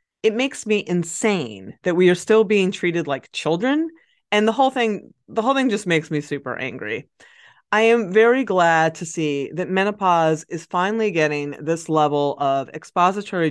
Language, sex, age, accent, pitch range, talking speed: English, female, 30-49, American, 155-230 Hz, 175 wpm